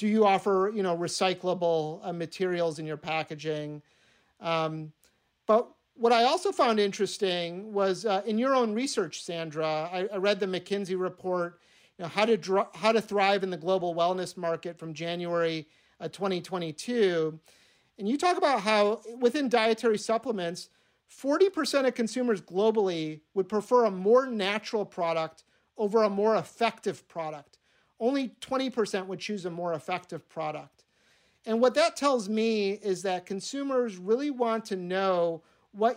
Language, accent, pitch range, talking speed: English, American, 175-220 Hz, 145 wpm